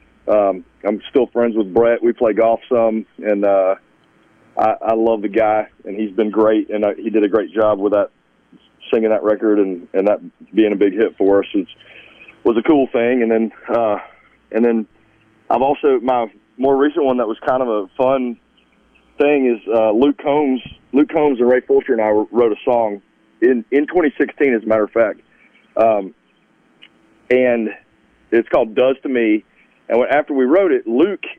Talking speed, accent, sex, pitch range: 190 wpm, American, male, 110-140 Hz